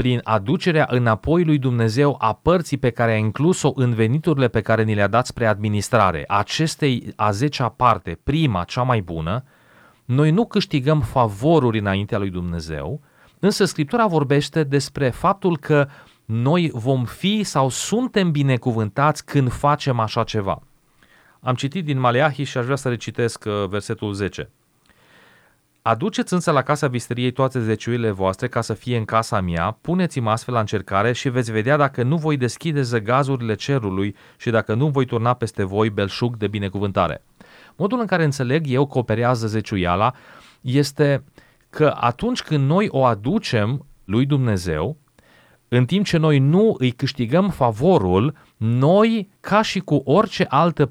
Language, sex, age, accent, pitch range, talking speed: Romanian, male, 30-49, native, 110-150 Hz, 150 wpm